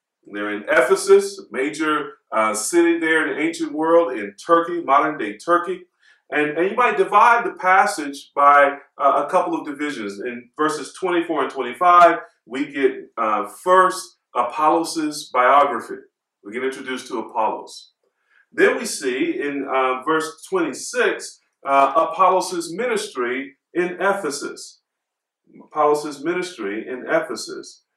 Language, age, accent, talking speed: English, 40-59, American, 135 wpm